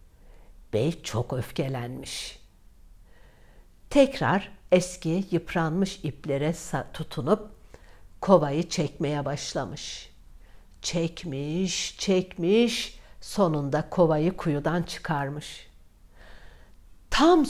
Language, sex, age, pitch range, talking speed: Turkish, female, 60-79, 150-250 Hz, 60 wpm